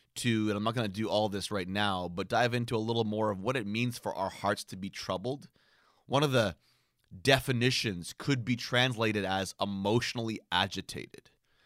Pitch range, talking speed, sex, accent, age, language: 95-120 Hz, 190 wpm, male, American, 30-49, English